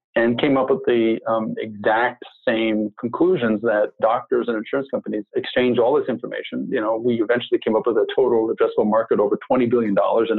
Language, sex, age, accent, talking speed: English, male, 50-69, American, 190 wpm